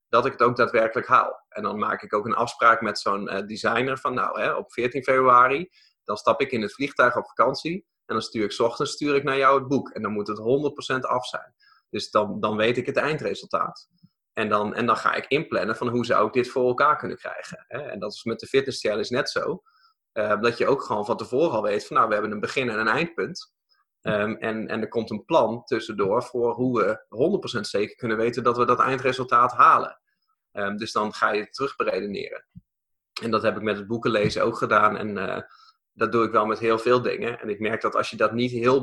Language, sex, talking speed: Dutch, male, 240 wpm